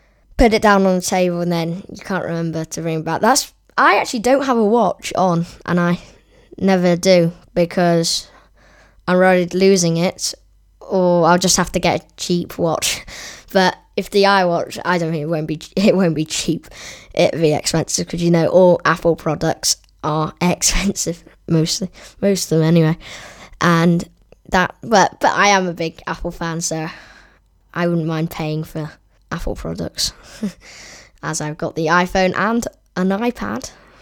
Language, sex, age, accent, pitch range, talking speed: English, female, 10-29, British, 165-220 Hz, 170 wpm